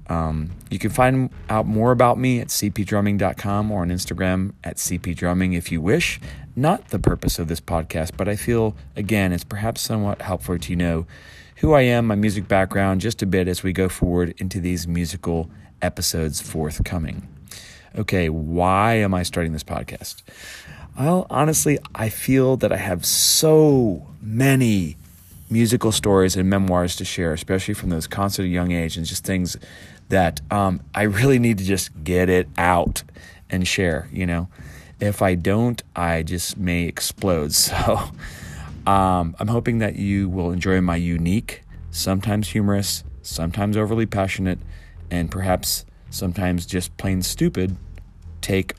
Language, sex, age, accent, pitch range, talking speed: English, male, 30-49, American, 85-105 Hz, 155 wpm